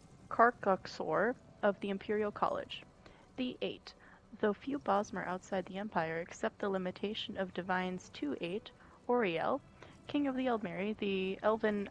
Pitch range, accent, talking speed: 195-250 Hz, American, 135 wpm